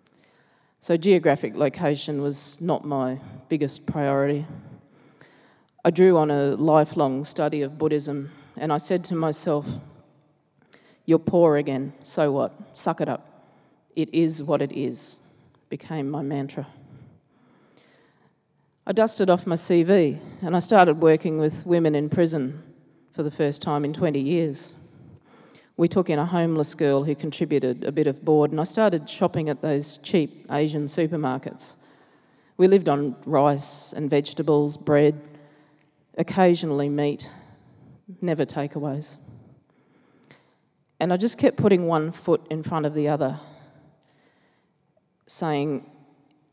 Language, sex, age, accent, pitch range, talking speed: English, female, 30-49, Australian, 145-165 Hz, 130 wpm